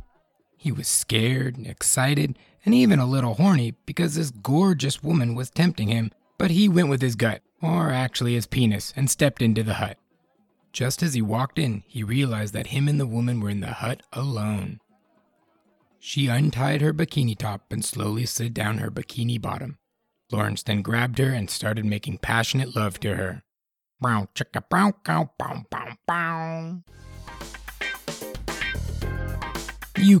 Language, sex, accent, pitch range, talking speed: English, male, American, 105-145 Hz, 145 wpm